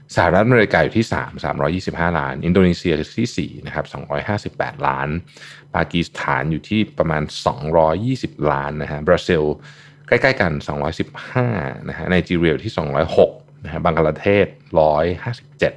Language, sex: Thai, male